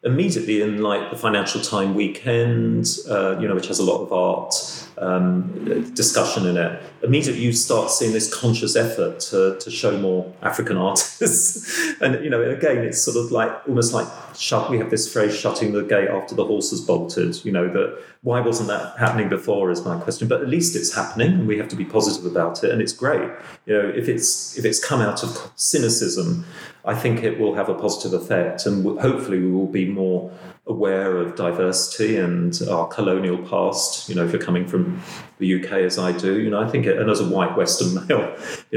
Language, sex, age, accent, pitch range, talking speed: English, male, 40-59, British, 95-130 Hz, 215 wpm